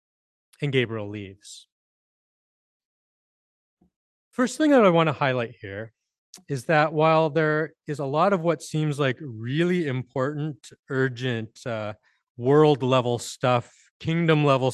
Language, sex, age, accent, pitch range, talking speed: English, male, 30-49, American, 115-155 Hz, 115 wpm